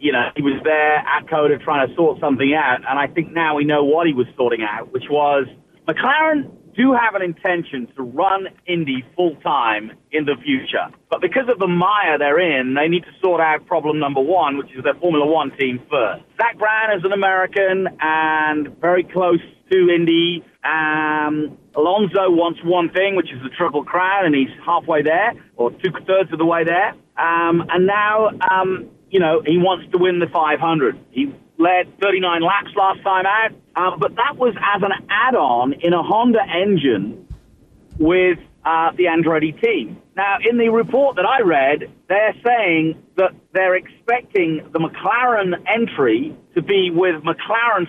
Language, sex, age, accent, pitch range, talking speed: English, male, 40-59, British, 155-200 Hz, 180 wpm